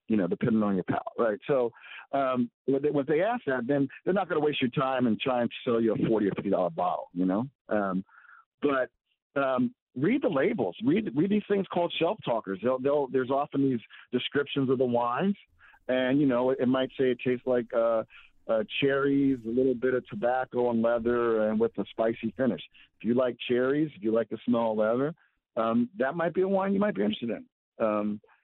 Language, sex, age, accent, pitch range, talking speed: English, male, 50-69, American, 110-135 Hz, 220 wpm